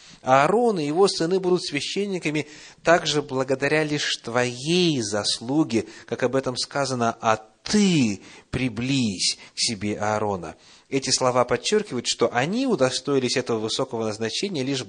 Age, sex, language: 30-49, male, Russian